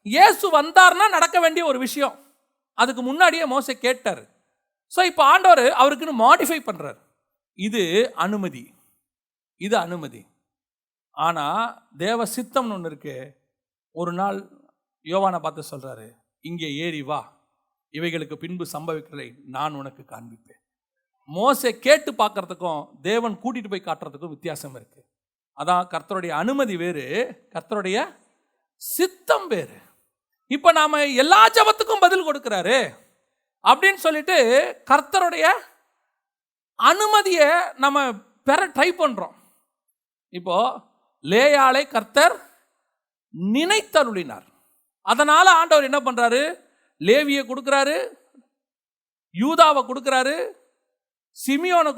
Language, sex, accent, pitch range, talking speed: Tamil, male, native, 195-320 Hz, 90 wpm